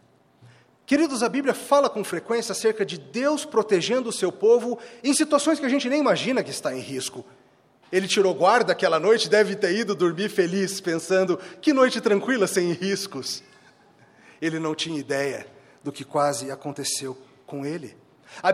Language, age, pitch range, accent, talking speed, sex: Portuguese, 40-59, 185-250 Hz, Brazilian, 165 wpm, male